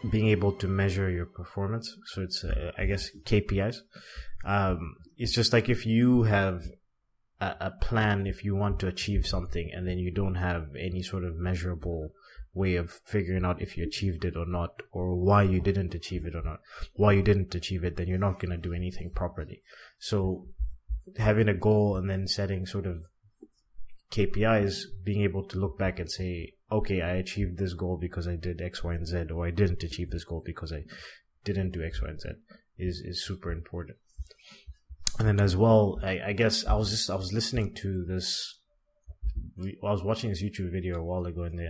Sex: male